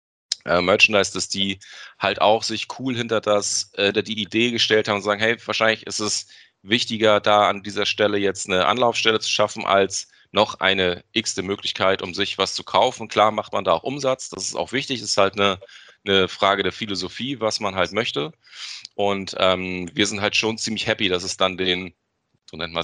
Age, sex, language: 30-49, male, German